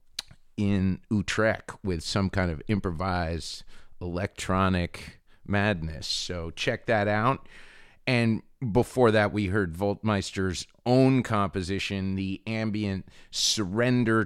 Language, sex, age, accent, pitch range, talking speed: English, male, 40-59, American, 85-110 Hz, 100 wpm